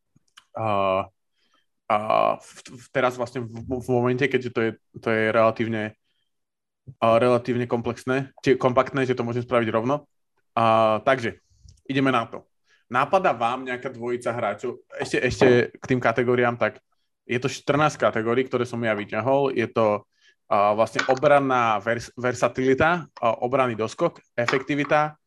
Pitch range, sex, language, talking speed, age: 115-130 Hz, male, Slovak, 135 wpm, 20-39